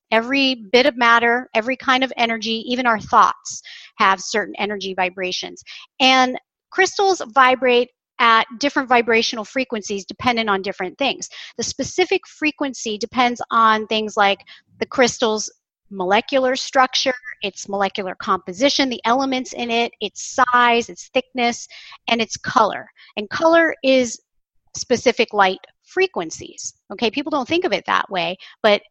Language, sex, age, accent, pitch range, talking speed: English, female, 40-59, American, 210-265 Hz, 135 wpm